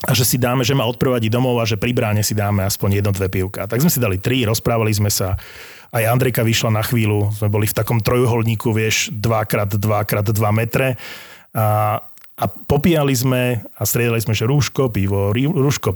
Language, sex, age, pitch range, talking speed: Slovak, male, 30-49, 105-130 Hz, 200 wpm